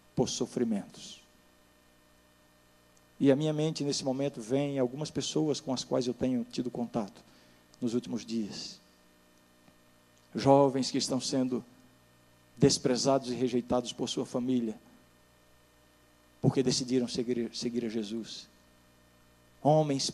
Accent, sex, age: Brazilian, male, 50-69